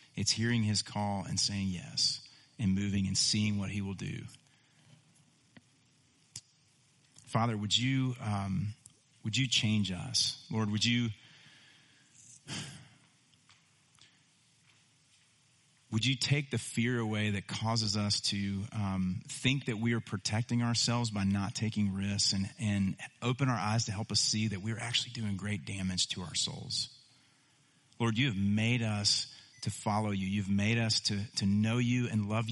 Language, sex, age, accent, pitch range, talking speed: English, male, 40-59, American, 100-125 Hz, 150 wpm